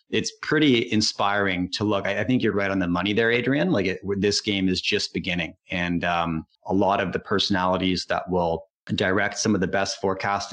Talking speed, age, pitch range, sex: 205 wpm, 30-49, 95-110 Hz, male